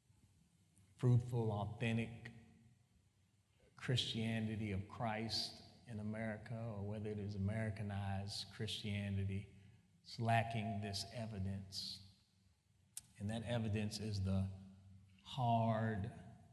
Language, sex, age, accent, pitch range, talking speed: English, male, 40-59, American, 100-110 Hz, 85 wpm